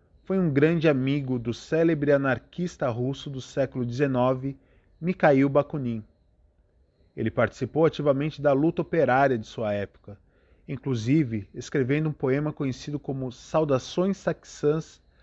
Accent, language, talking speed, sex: Brazilian, Portuguese, 120 wpm, male